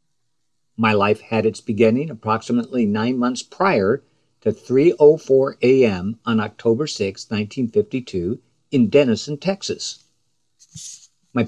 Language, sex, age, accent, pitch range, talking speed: English, male, 60-79, American, 110-140 Hz, 105 wpm